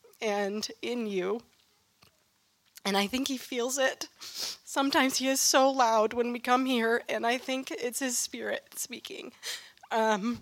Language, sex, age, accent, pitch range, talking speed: English, female, 30-49, American, 190-235 Hz, 150 wpm